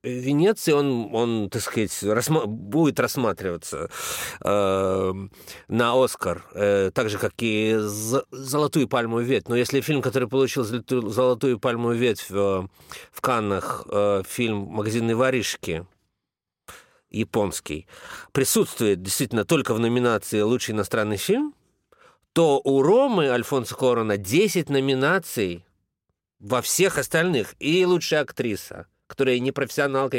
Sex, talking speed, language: male, 125 wpm, Russian